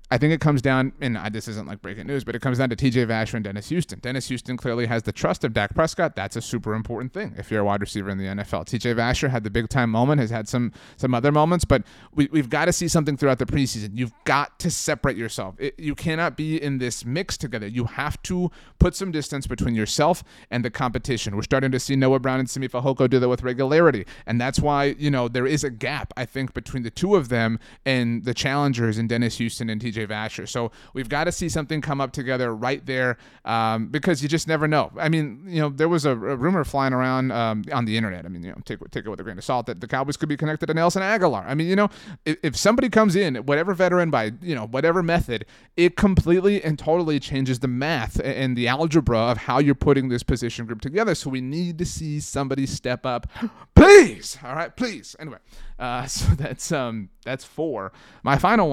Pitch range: 115-155 Hz